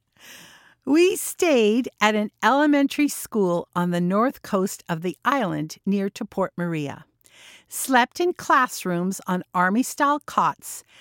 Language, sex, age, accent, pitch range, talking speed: English, female, 50-69, American, 180-265 Hz, 125 wpm